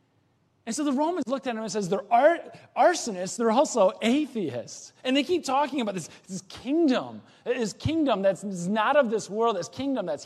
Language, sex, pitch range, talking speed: English, male, 205-275 Hz, 195 wpm